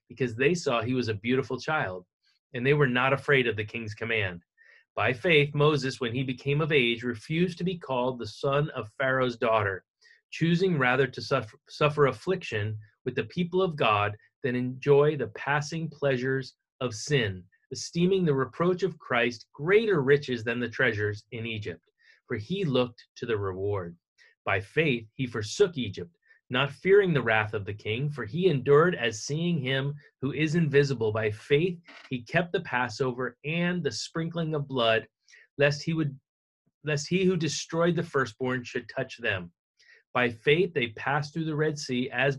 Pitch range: 115-150 Hz